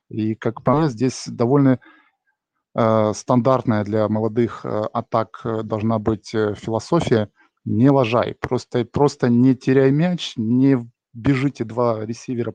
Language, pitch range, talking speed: Russian, 110-130 Hz, 120 wpm